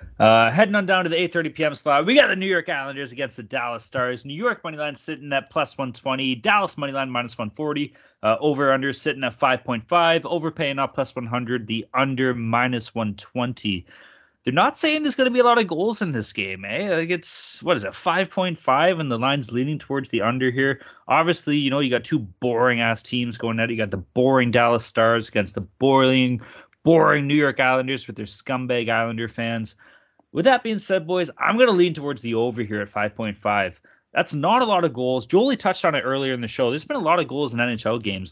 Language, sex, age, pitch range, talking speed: English, male, 30-49, 115-165 Hz, 215 wpm